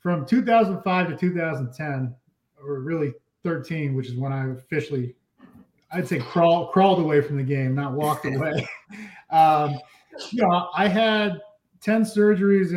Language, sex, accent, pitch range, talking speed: English, male, American, 135-175 Hz, 140 wpm